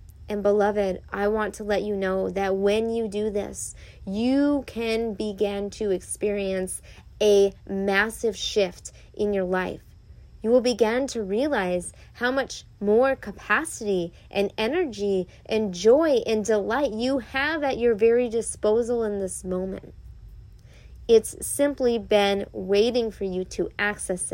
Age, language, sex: 30-49, English, female